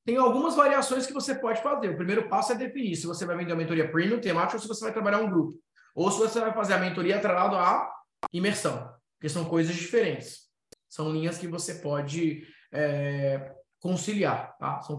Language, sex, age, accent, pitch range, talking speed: Portuguese, male, 20-39, Brazilian, 135-175 Hz, 200 wpm